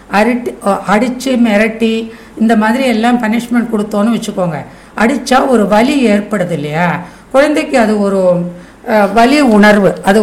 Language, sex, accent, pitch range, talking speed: Tamil, female, native, 185-230 Hz, 115 wpm